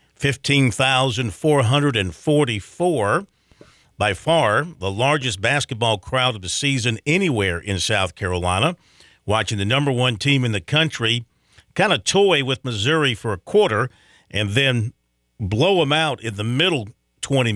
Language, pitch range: English, 105-145 Hz